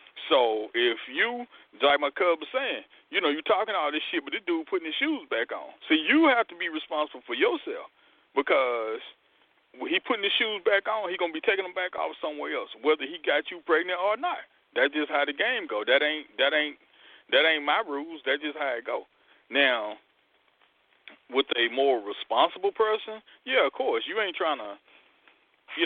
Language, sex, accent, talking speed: English, male, American, 205 wpm